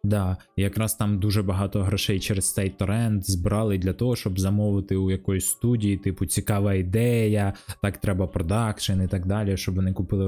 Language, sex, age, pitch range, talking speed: Ukrainian, male, 20-39, 105-130 Hz, 175 wpm